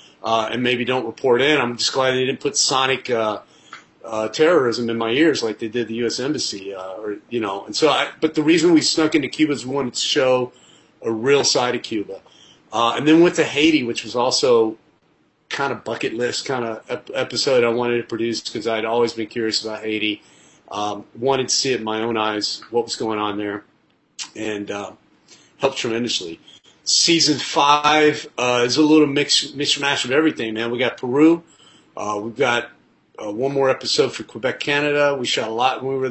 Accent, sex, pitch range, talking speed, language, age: American, male, 110-140 Hz, 205 wpm, English, 40-59